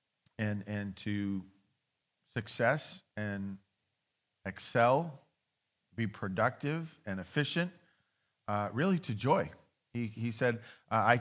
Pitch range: 105-145 Hz